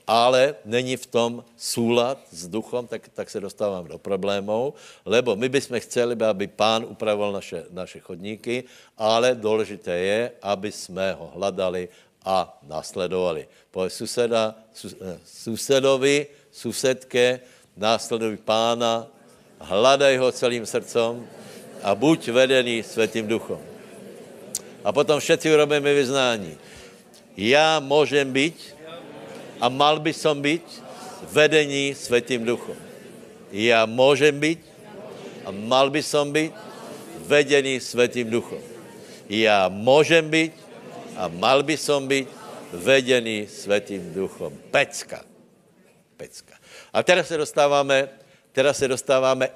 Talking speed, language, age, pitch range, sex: 115 wpm, Slovak, 60-79, 110-145 Hz, male